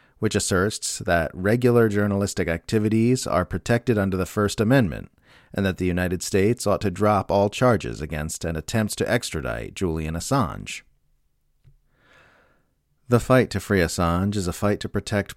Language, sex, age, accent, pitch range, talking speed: English, male, 40-59, American, 85-115 Hz, 150 wpm